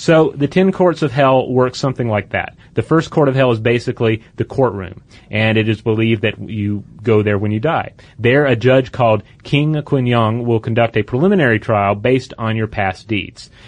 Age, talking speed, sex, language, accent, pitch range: 30-49, 200 wpm, male, English, American, 115-155 Hz